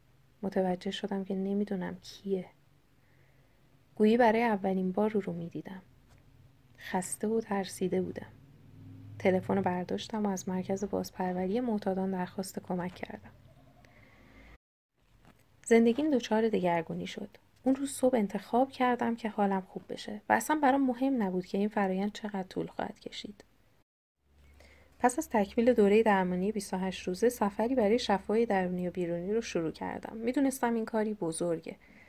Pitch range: 175-220 Hz